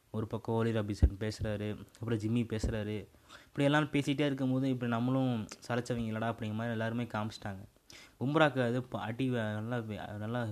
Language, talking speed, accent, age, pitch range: Tamil, 135 wpm, native, 20-39, 110-130 Hz